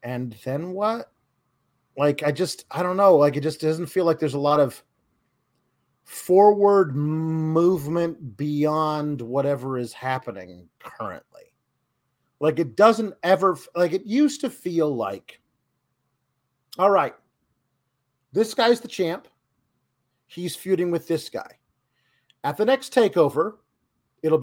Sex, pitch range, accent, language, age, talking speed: male, 140-195 Hz, American, English, 40-59, 130 wpm